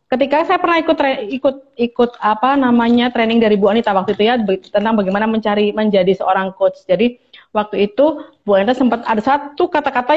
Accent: native